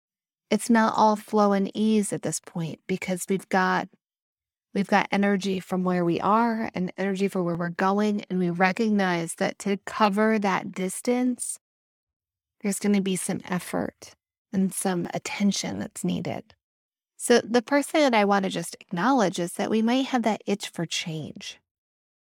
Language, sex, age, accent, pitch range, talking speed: English, female, 30-49, American, 175-220 Hz, 170 wpm